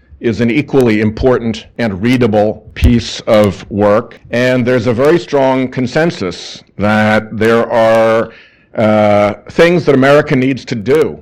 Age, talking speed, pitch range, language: 50-69, 135 wpm, 110-130 Hz, English